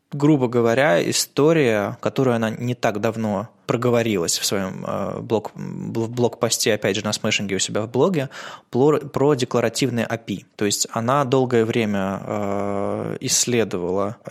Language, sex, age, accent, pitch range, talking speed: Russian, male, 20-39, native, 105-125 Hz, 125 wpm